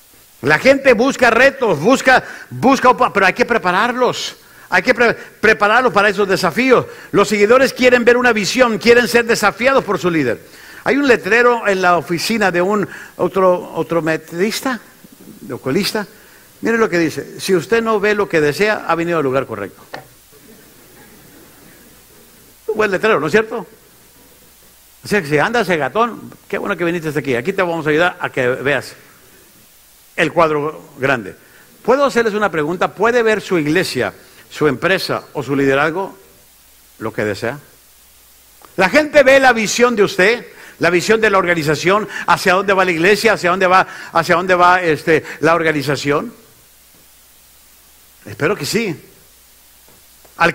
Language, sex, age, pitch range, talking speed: Spanish, male, 50-69, 155-230 Hz, 155 wpm